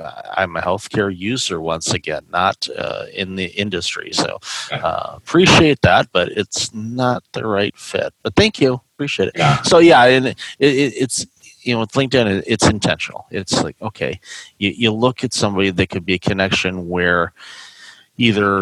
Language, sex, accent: English, male, American